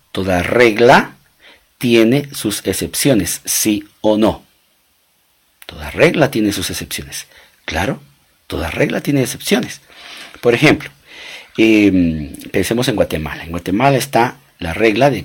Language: Italian